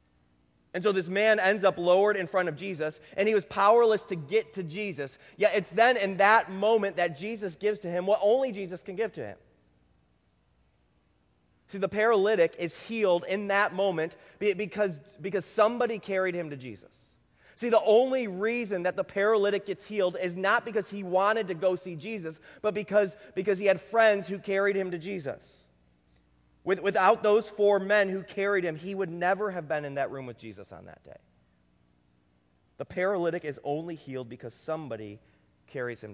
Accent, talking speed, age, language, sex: American, 185 wpm, 30-49, English, male